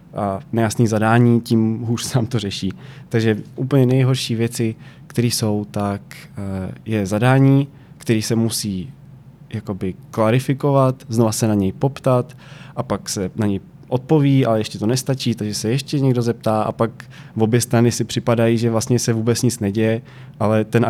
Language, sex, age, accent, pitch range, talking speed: Czech, male, 20-39, native, 105-125 Hz, 165 wpm